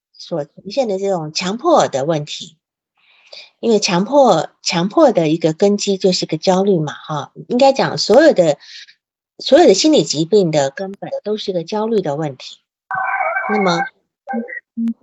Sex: female